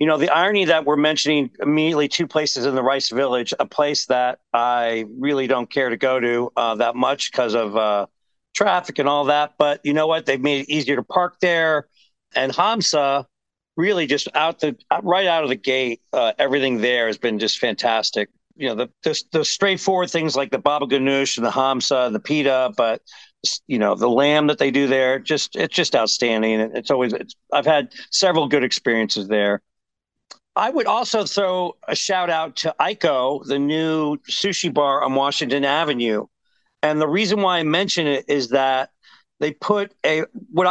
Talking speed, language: 195 wpm, English